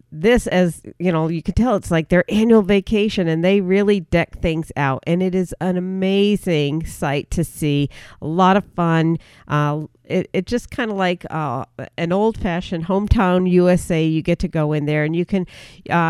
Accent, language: American, English